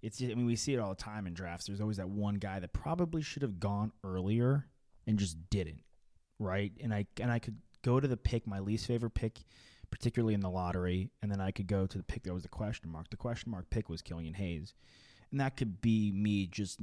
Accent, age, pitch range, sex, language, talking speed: American, 20-39, 90-115 Hz, male, English, 250 wpm